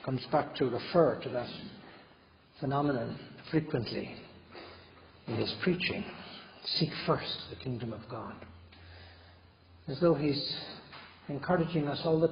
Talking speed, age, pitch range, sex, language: 115 wpm, 60-79, 100-155 Hz, male, English